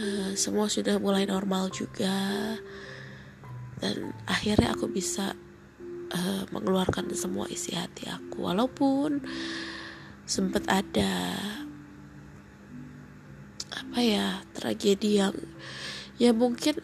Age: 20-39